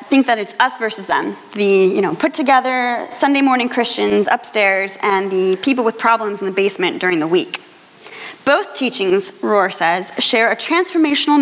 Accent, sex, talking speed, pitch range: American, female, 170 wpm, 205-295 Hz